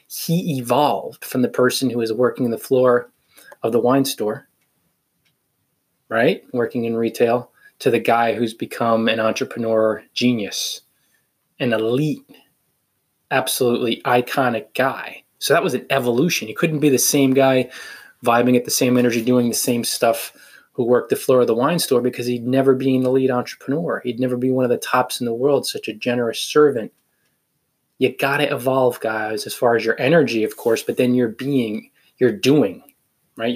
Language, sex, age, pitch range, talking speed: English, male, 20-39, 115-140 Hz, 180 wpm